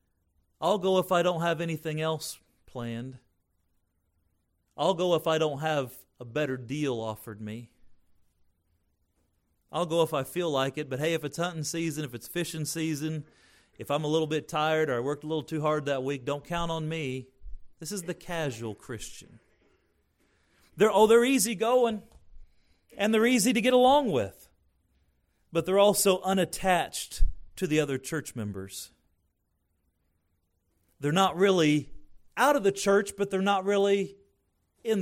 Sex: male